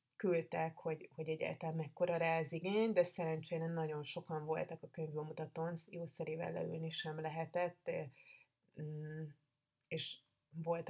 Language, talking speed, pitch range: Hungarian, 125 wpm, 160-175 Hz